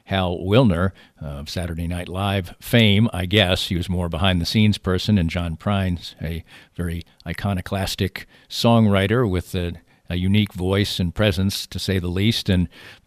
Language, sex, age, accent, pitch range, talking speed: English, male, 50-69, American, 90-100 Hz, 155 wpm